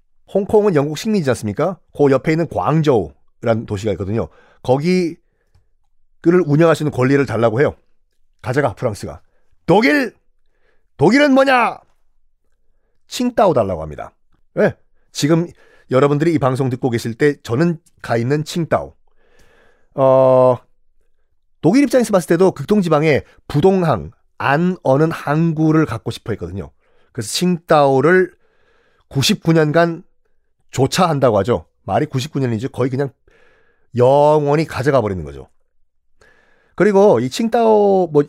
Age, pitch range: 40-59, 125-175 Hz